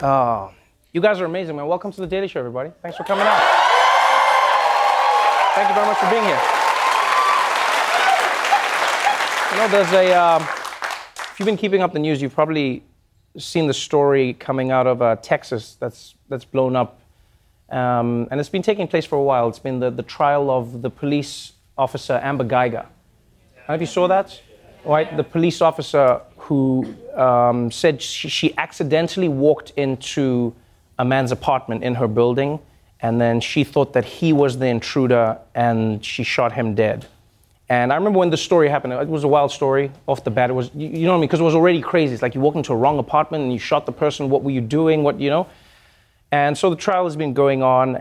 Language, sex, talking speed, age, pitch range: English, male, 205 wpm, 30-49, 120-155 Hz